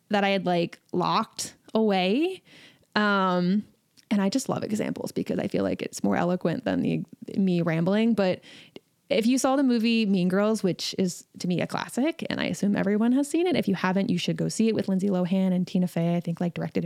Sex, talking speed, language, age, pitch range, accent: female, 220 wpm, English, 20-39, 195-250 Hz, American